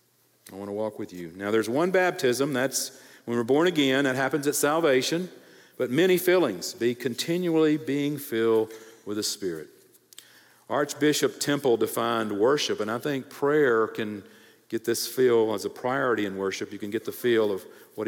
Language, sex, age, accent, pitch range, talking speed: English, male, 50-69, American, 110-150 Hz, 175 wpm